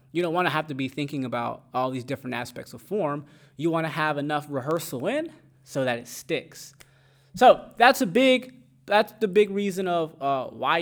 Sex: male